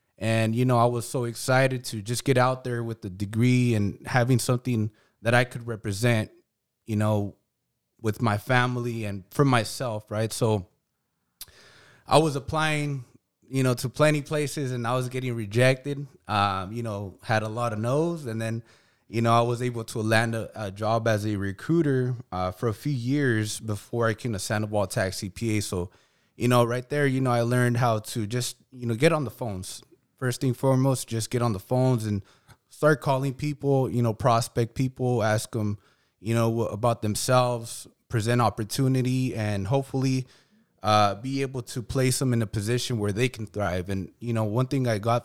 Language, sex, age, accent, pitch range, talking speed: English, male, 20-39, American, 110-130 Hz, 190 wpm